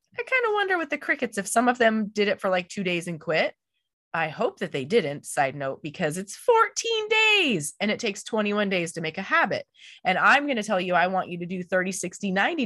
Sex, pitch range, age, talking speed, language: female, 180-255 Hz, 20-39, 250 wpm, English